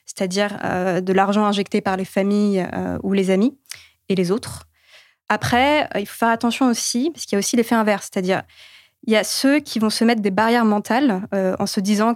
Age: 20-39